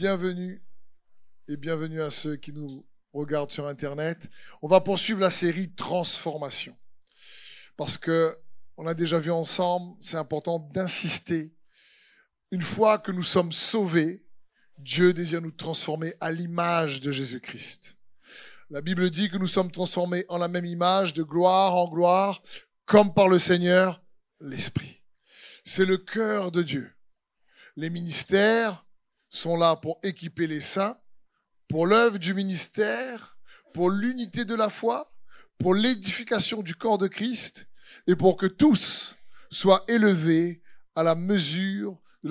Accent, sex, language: French, male, French